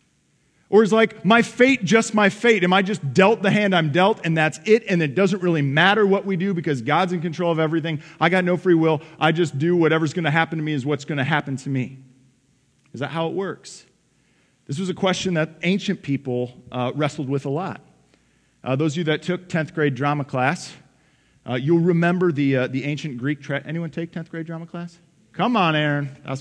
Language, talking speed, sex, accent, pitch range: English, 225 wpm, male, American, 135-180 Hz